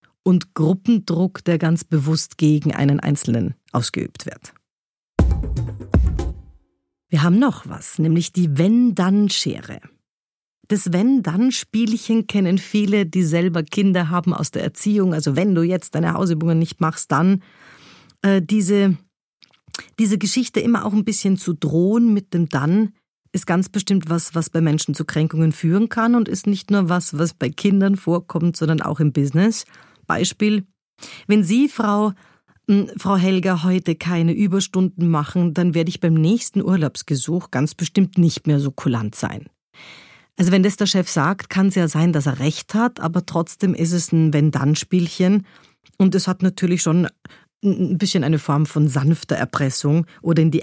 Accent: German